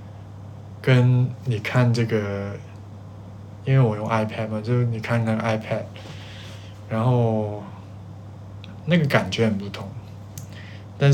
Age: 20-39